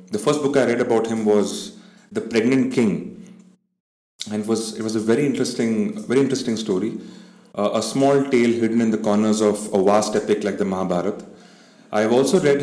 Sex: male